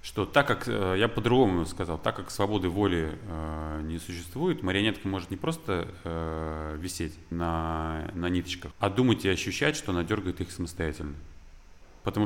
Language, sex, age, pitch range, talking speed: Russian, male, 30-49, 85-110 Hz, 160 wpm